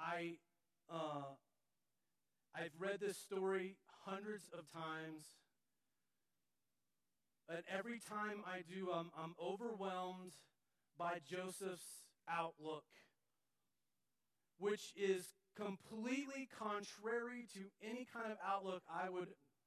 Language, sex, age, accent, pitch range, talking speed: English, male, 40-59, American, 175-230 Hz, 95 wpm